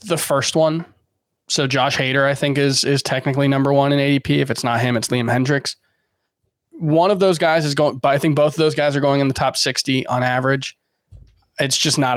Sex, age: male, 20-39